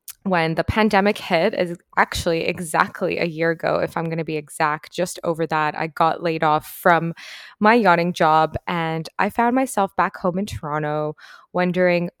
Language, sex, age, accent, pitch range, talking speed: English, female, 20-39, American, 160-195 Hz, 175 wpm